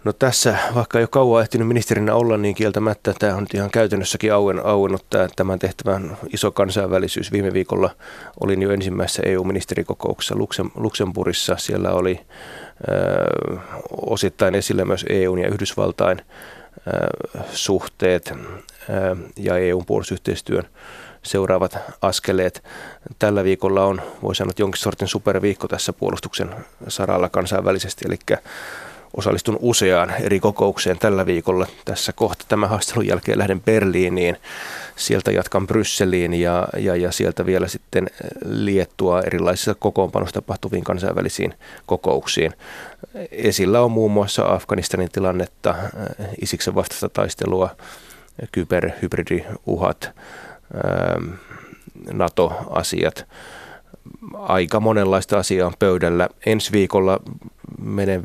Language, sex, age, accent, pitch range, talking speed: Finnish, male, 20-39, native, 90-105 Hz, 105 wpm